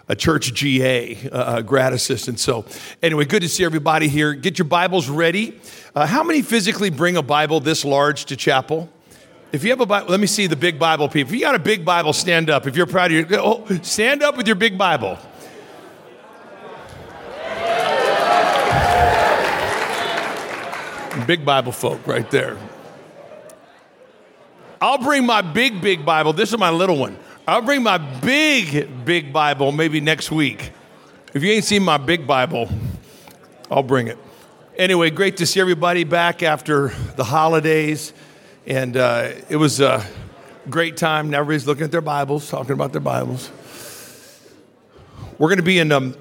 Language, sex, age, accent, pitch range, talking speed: English, male, 50-69, American, 140-180 Hz, 160 wpm